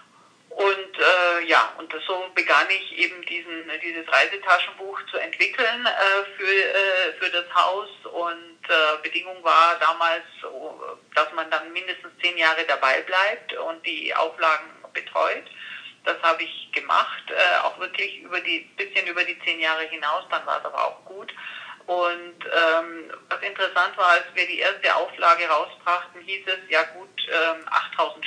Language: German